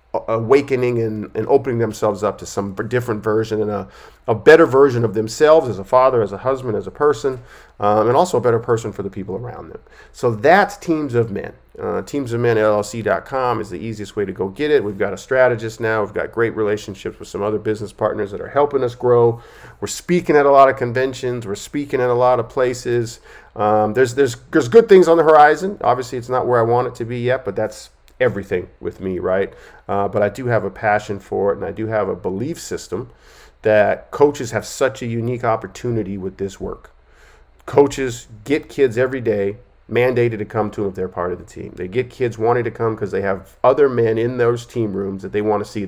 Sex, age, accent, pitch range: male, 40-59, American, 105-130 Hz